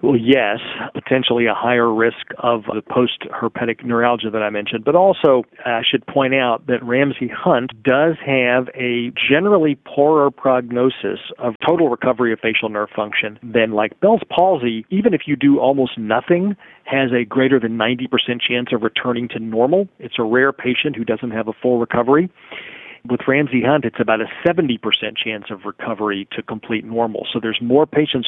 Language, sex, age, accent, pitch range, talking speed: English, male, 40-59, American, 110-130 Hz, 170 wpm